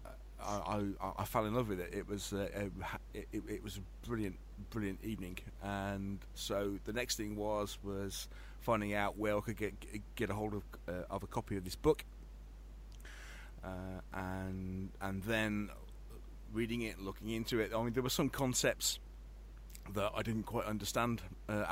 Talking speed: 175 wpm